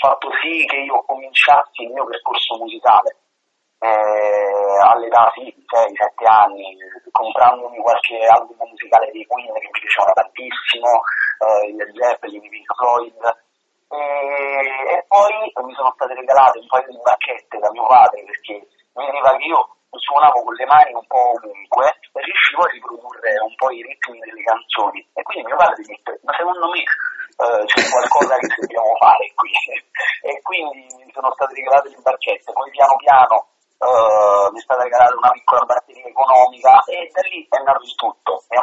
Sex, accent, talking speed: male, native, 170 wpm